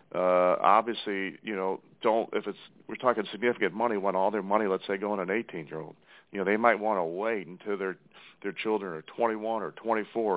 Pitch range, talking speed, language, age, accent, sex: 100-115 Hz, 210 wpm, English, 40-59, American, male